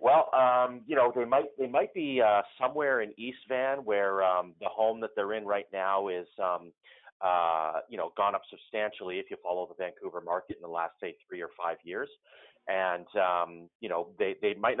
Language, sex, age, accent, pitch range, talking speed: English, male, 30-49, American, 90-130 Hz, 210 wpm